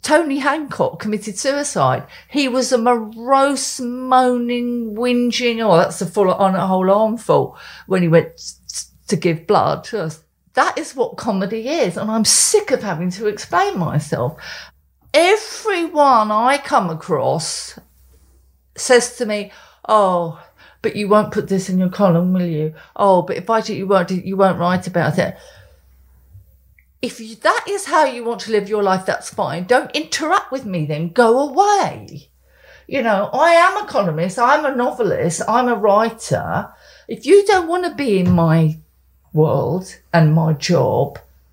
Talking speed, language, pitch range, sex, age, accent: 160 wpm, English, 175-255 Hz, female, 50-69, British